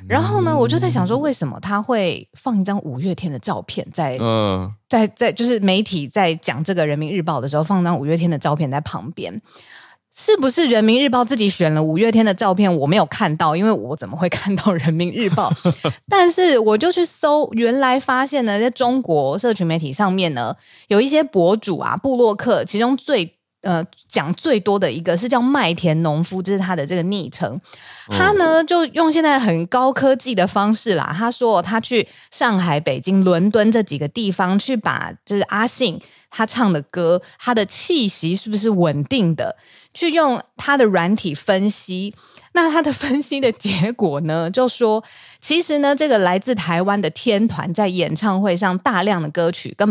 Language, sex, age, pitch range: Chinese, female, 20-39, 170-245 Hz